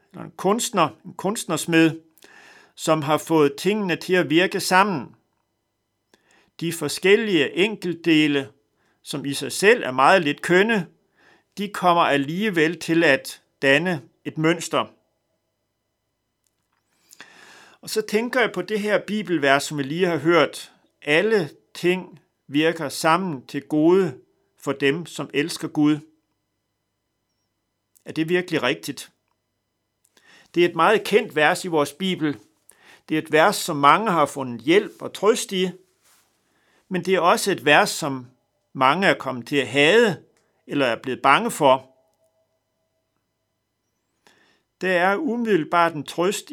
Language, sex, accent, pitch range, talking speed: Danish, male, native, 140-180 Hz, 135 wpm